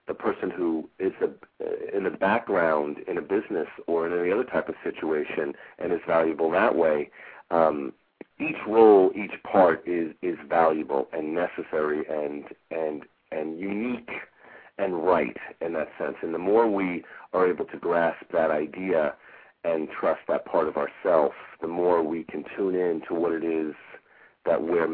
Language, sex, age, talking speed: English, male, 40-59, 170 wpm